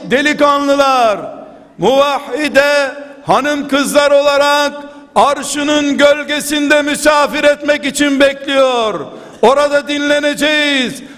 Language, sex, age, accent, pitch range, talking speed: Turkish, male, 60-79, native, 285-305 Hz, 70 wpm